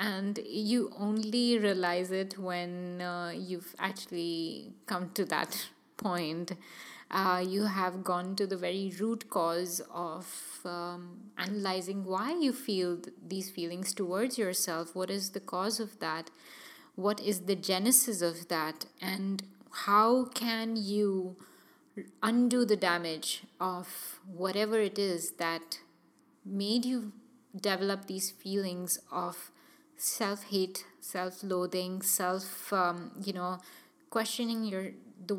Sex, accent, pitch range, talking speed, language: female, Indian, 180-220 Hz, 125 wpm, English